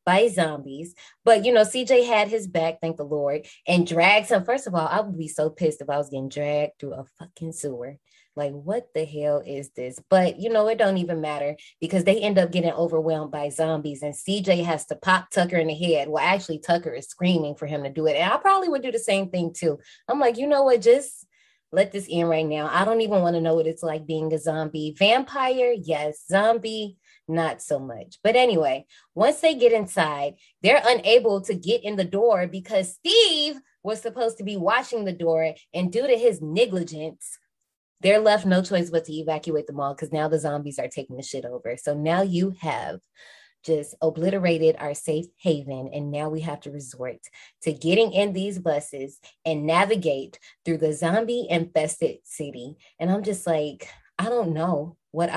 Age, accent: 20-39, American